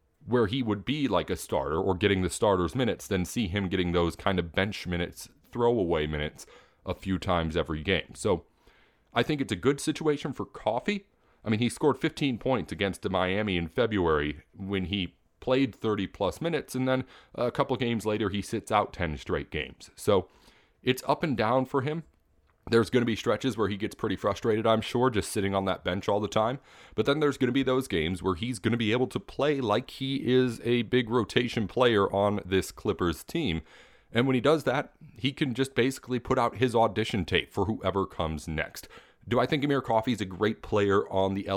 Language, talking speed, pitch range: English, 210 wpm, 95-130 Hz